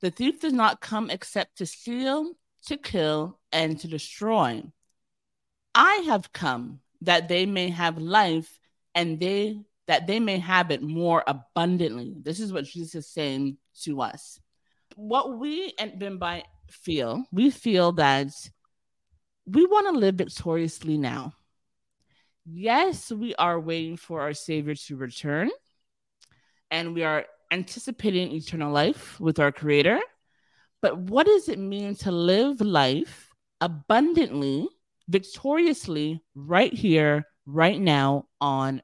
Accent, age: American, 30-49